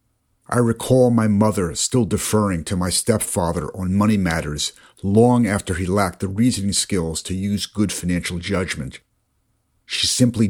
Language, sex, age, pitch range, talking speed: English, male, 50-69, 90-110 Hz, 150 wpm